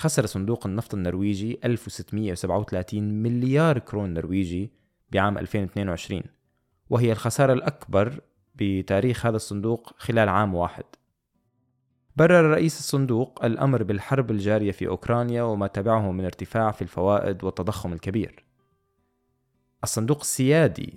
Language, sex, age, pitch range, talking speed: Arabic, male, 20-39, 100-135 Hz, 105 wpm